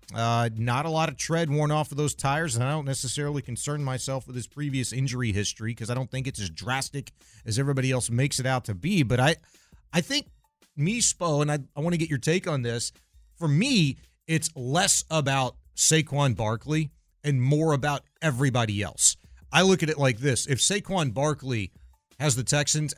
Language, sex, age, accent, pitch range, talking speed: English, male, 40-59, American, 125-160 Hz, 200 wpm